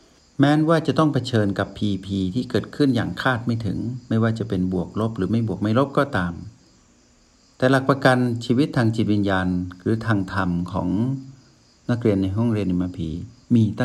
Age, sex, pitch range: 60-79, male, 95-125 Hz